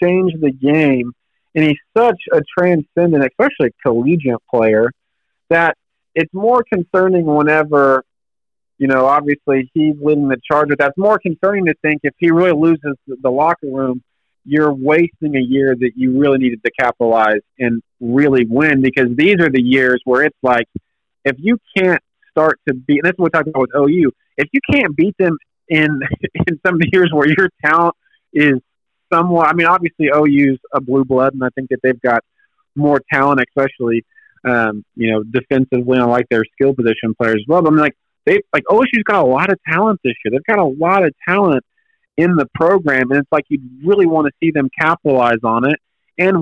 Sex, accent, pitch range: male, American, 130-170 Hz